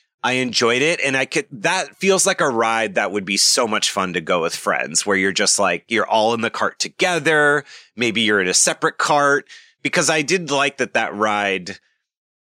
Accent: American